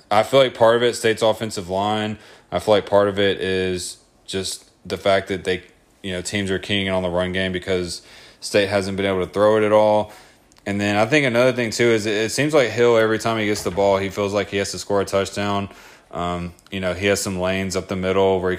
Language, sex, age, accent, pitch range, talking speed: English, male, 20-39, American, 90-105 Hz, 260 wpm